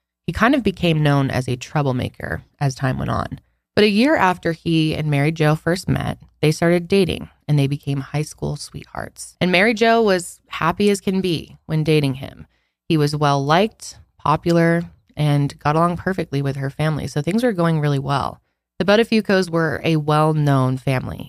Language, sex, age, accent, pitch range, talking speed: English, female, 20-39, American, 140-180 Hz, 190 wpm